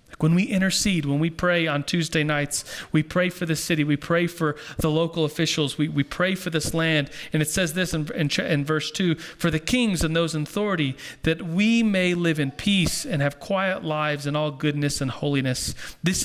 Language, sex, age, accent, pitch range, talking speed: English, male, 40-59, American, 140-170 Hz, 215 wpm